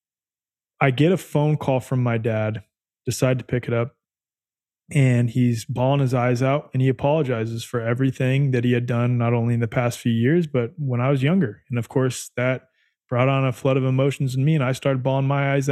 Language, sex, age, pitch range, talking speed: English, male, 20-39, 120-140 Hz, 220 wpm